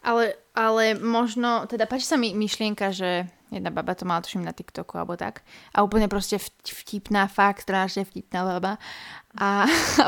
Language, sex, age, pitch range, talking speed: Slovak, female, 20-39, 185-220 Hz, 165 wpm